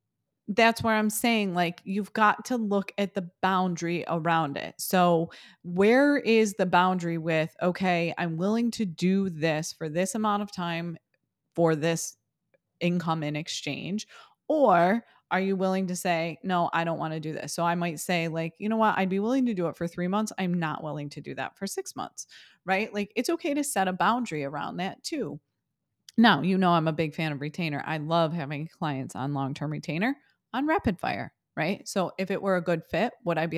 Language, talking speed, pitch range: English, 210 wpm, 160-210 Hz